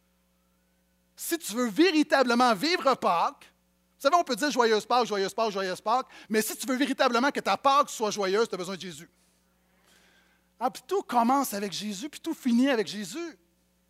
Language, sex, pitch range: French, male, 180-250 Hz